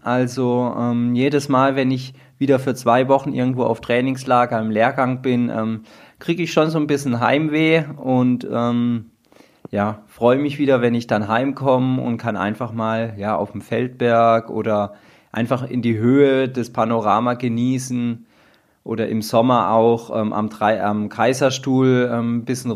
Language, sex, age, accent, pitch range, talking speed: German, male, 20-39, German, 115-140 Hz, 155 wpm